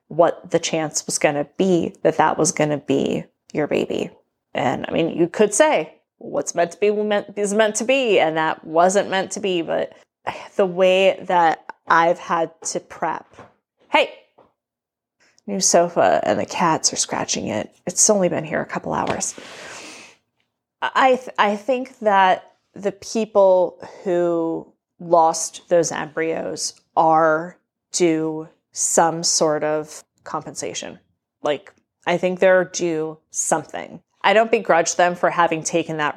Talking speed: 150 wpm